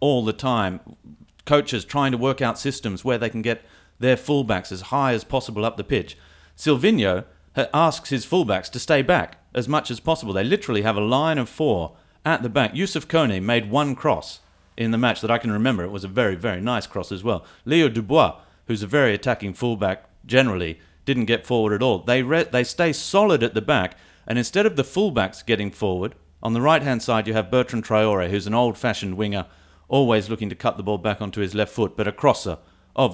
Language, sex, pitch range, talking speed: English, male, 105-135 Hz, 215 wpm